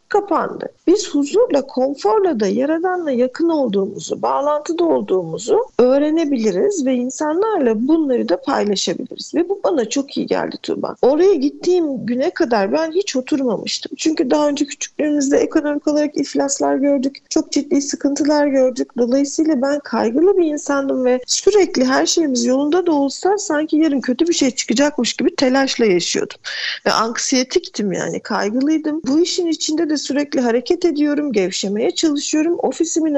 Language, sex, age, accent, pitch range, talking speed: Turkish, female, 50-69, native, 265-355 Hz, 140 wpm